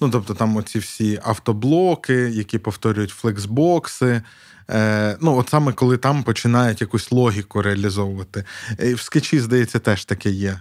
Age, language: 20-39, Ukrainian